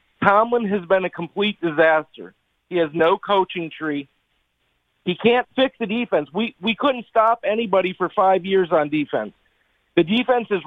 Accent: American